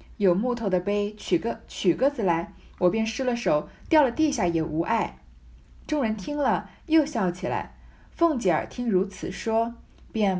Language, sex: Chinese, female